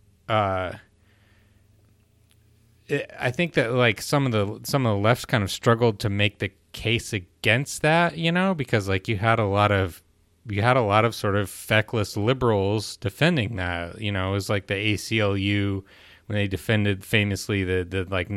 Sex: male